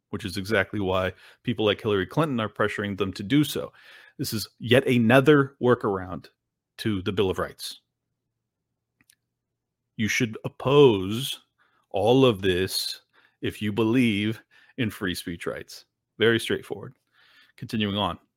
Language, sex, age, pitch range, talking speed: English, male, 40-59, 105-135 Hz, 135 wpm